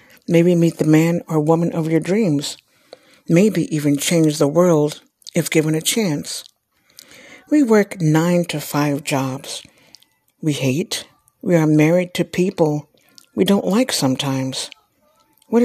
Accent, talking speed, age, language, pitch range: American, 140 wpm, 60-79, English, 150-195 Hz